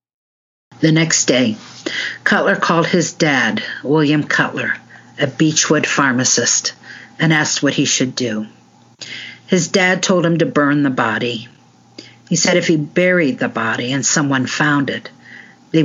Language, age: English, 50-69